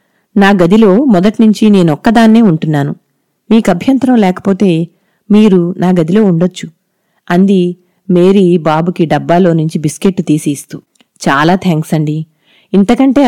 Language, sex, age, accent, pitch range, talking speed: Telugu, female, 30-49, native, 165-210 Hz, 105 wpm